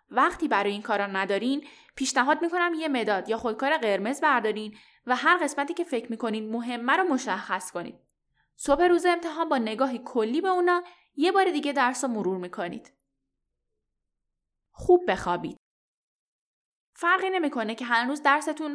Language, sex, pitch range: Persian, female, 220-310 Hz